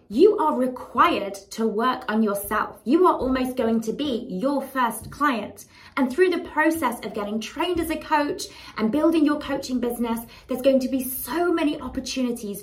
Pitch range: 230-295 Hz